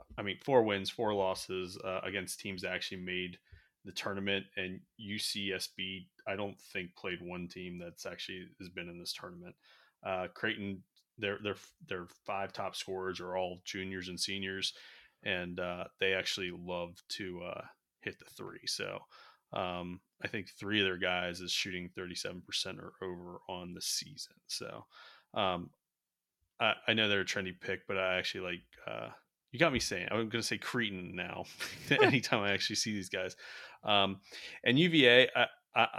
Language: English